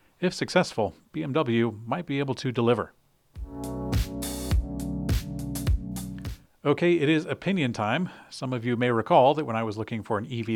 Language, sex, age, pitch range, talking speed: English, male, 40-59, 105-135 Hz, 150 wpm